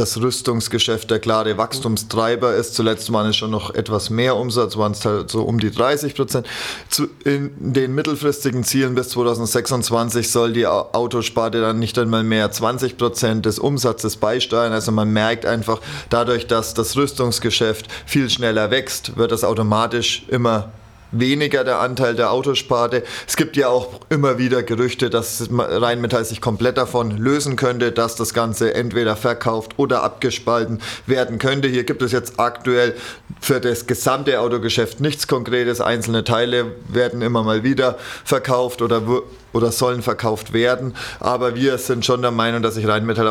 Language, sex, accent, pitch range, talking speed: German, male, German, 115-125 Hz, 160 wpm